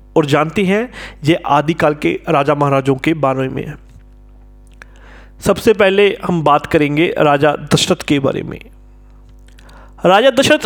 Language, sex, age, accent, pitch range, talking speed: Hindi, male, 40-59, native, 150-230 Hz, 130 wpm